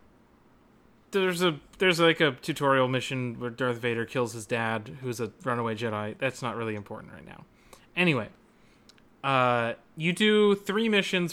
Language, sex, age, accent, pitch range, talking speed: English, male, 30-49, American, 120-160 Hz, 155 wpm